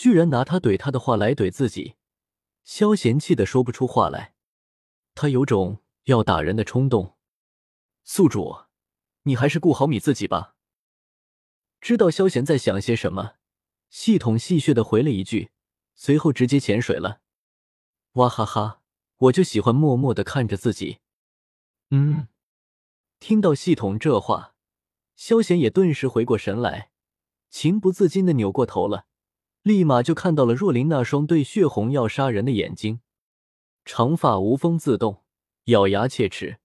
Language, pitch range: Chinese, 105-160 Hz